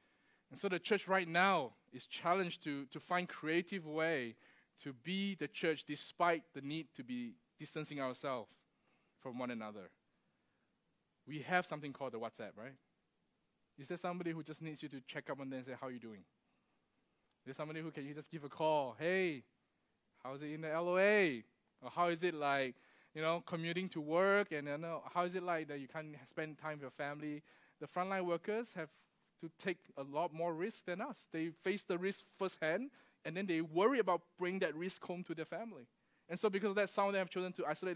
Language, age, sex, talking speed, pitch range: English, 20-39, male, 210 wpm, 150-190 Hz